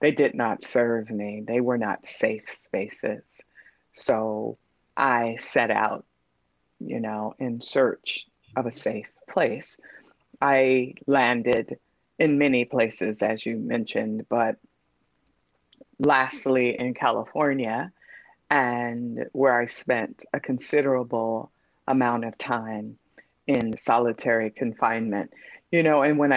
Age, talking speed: 30-49, 115 wpm